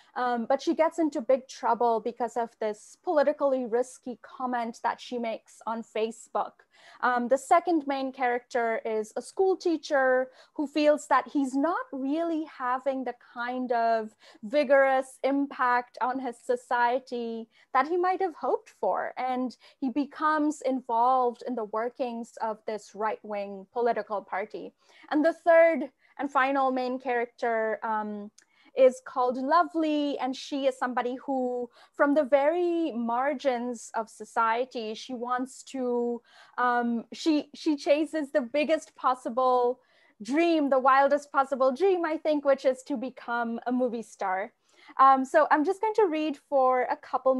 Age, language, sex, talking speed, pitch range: 20-39, English, female, 145 wpm, 240-295 Hz